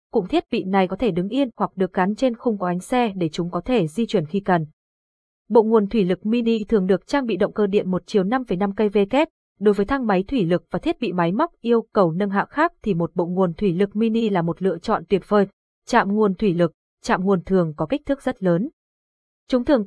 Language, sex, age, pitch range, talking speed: Vietnamese, female, 20-39, 185-235 Hz, 255 wpm